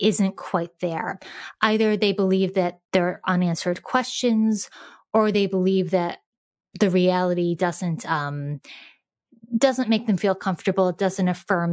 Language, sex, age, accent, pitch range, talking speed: English, female, 20-39, American, 175-210 Hz, 140 wpm